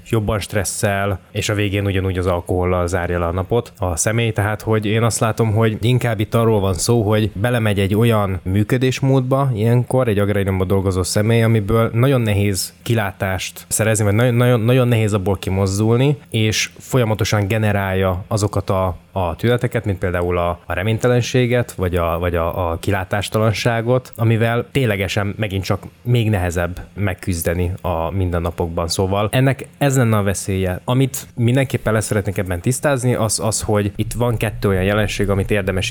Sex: male